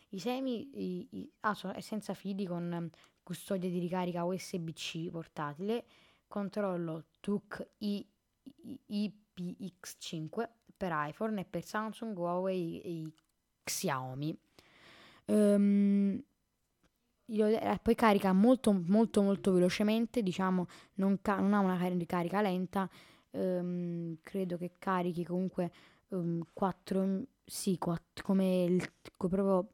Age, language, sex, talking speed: 10-29, Italian, female, 100 wpm